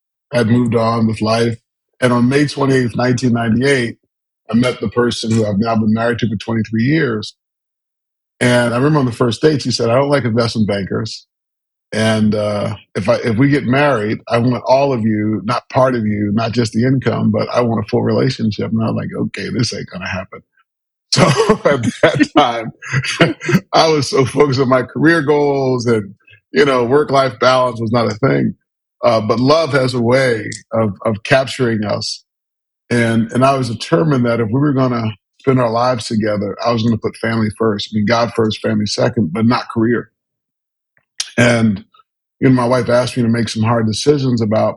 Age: 40-59